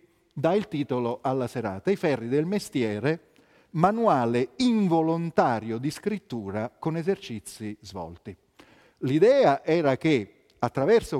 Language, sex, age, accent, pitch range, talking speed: Italian, male, 40-59, native, 120-180 Hz, 105 wpm